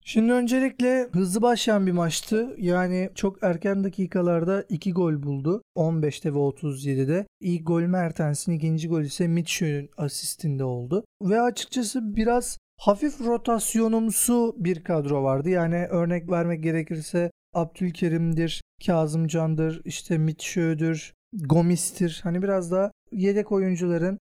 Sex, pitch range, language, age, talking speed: male, 160-200 Hz, Turkish, 40-59, 115 wpm